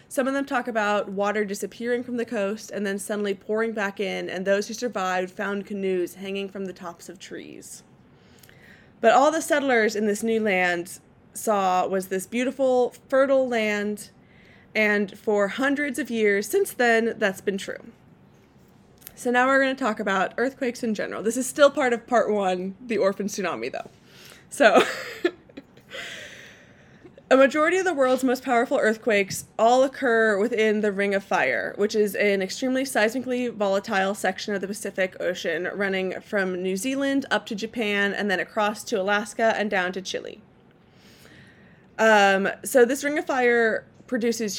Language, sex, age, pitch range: English, female, 20-39, 195-245 Hz